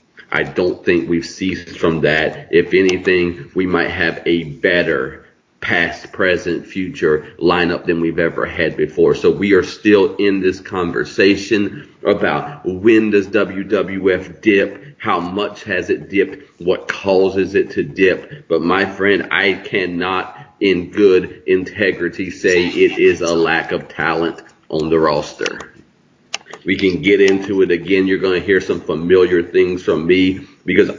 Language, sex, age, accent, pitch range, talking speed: English, male, 40-59, American, 85-110 Hz, 155 wpm